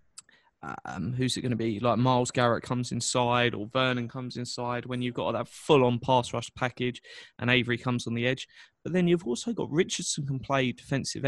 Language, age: English, 20-39